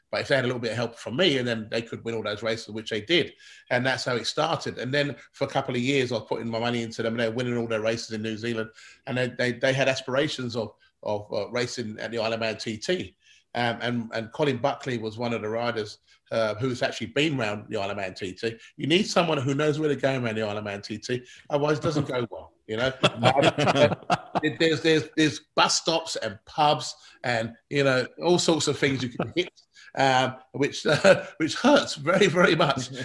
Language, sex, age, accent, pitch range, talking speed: English, male, 30-49, British, 115-150 Hz, 240 wpm